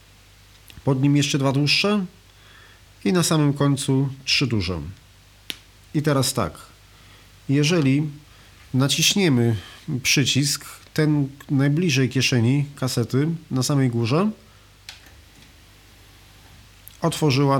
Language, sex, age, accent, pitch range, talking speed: Polish, male, 40-59, native, 100-140 Hz, 85 wpm